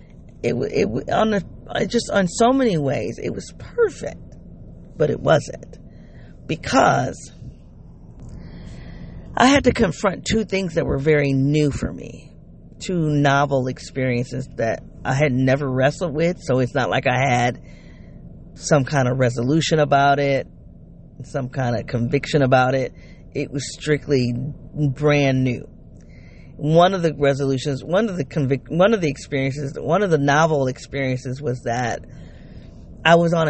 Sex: female